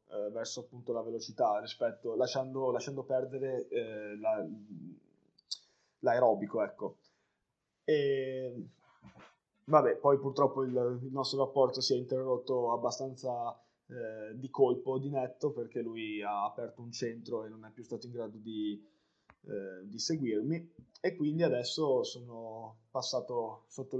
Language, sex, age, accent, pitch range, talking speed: Italian, male, 20-39, native, 120-135 Hz, 130 wpm